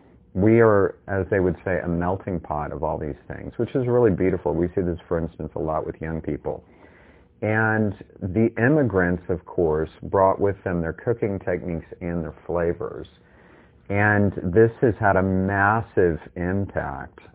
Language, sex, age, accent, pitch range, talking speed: English, male, 40-59, American, 85-105 Hz, 165 wpm